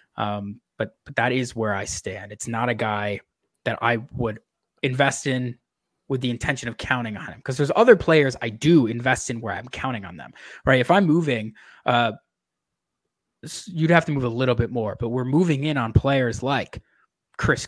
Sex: male